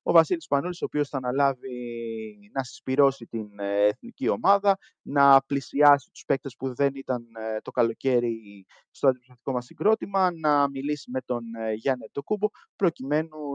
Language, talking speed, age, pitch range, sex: Greek, 140 wpm, 20-39, 120-145 Hz, male